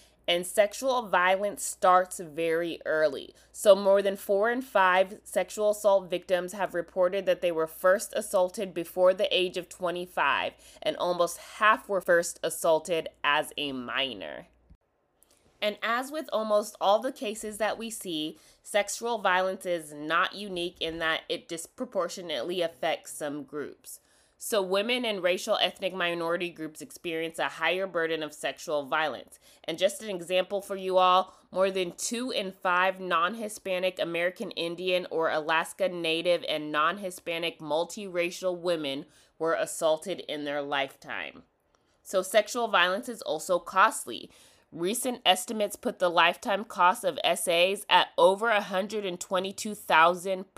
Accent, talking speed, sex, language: American, 140 wpm, female, English